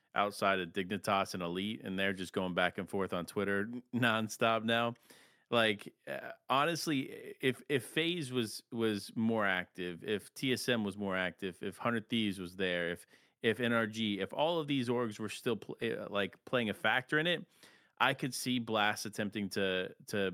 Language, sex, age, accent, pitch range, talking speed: English, male, 30-49, American, 100-120 Hz, 175 wpm